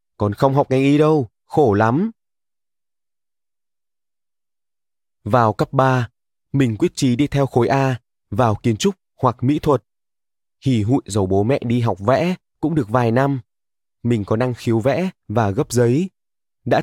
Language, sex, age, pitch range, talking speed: Vietnamese, male, 20-39, 110-140 Hz, 160 wpm